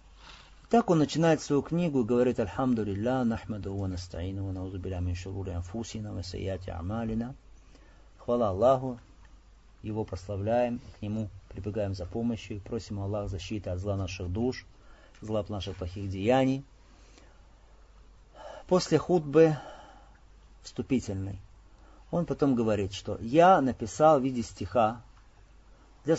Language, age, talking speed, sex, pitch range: Russian, 40-59, 110 wpm, male, 95-145 Hz